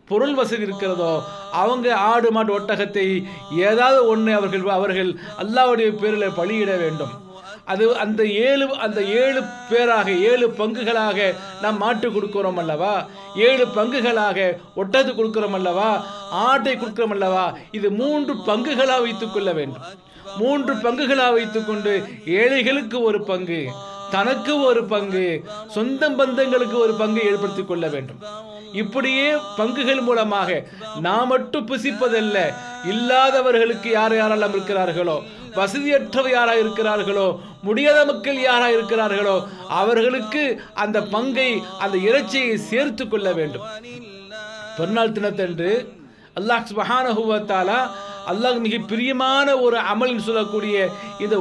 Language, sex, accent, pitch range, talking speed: Tamil, male, native, 195-245 Hz, 95 wpm